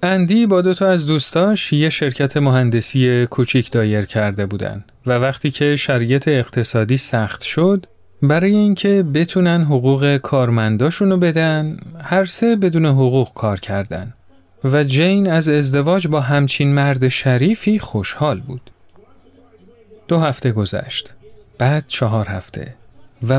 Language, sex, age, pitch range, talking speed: Persian, male, 40-59, 115-155 Hz, 125 wpm